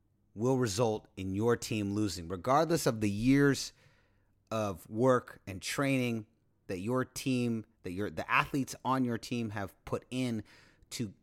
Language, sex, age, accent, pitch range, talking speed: English, male, 30-49, American, 105-135 Hz, 150 wpm